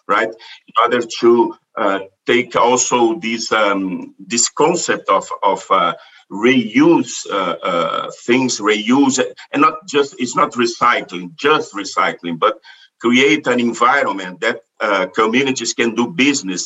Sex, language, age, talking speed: male, English, 50-69, 135 wpm